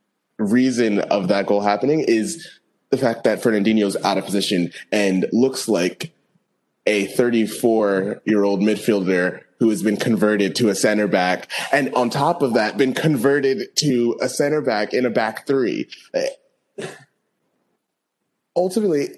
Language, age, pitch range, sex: English, 20-39, 100-140 Hz, male